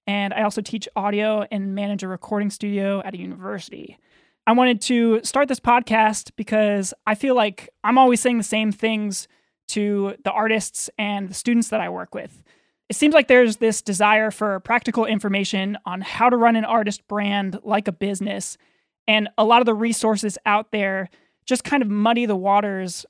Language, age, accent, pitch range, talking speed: English, 20-39, American, 205-235 Hz, 185 wpm